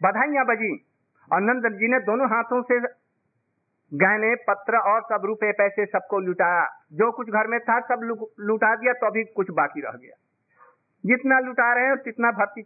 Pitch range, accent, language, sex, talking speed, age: 175-235 Hz, native, Hindi, male, 160 wpm, 50-69